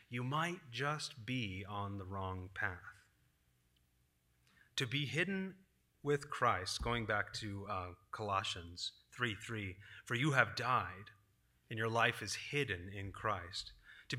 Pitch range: 105-145 Hz